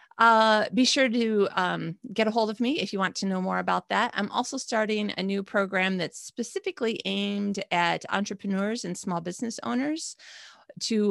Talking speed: 185 wpm